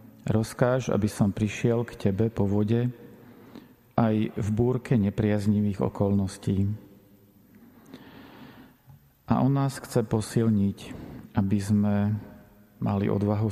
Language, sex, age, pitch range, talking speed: Slovak, male, 40-59, 100-120 Hz, 100 wpm